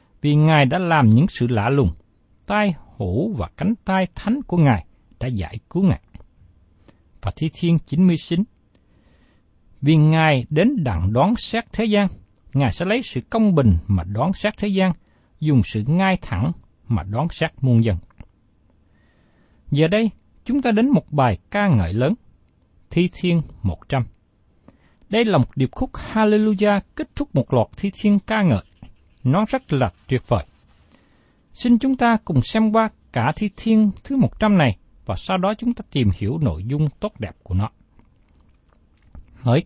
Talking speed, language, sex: 165 wpm, Vietnamese, male